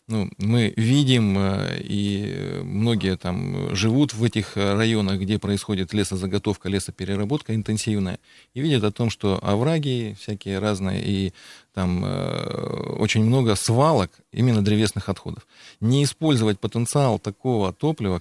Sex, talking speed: male, 120 wpm